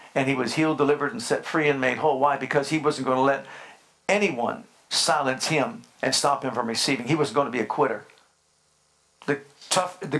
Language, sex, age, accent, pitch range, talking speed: English, male, 50-69, American, 135-165 Hz, 210 wpm